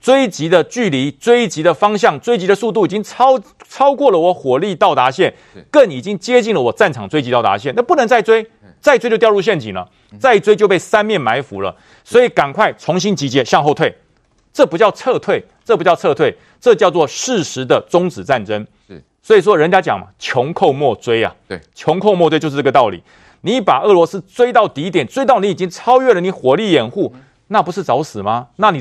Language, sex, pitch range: Chinese, male, 180-250 Hz